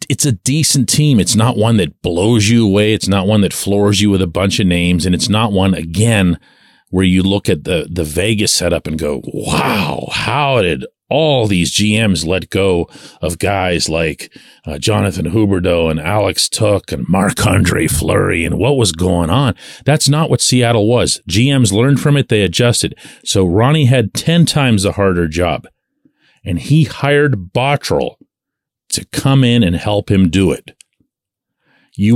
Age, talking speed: 40-59, 175 wpm